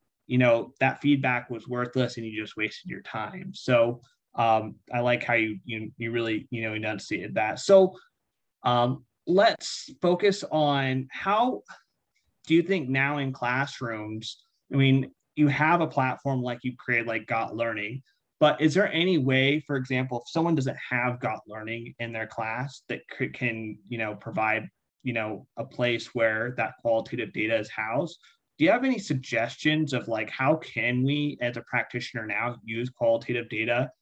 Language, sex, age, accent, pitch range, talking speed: English, male, 30-49, American, 115-135 Hz, 175 wpm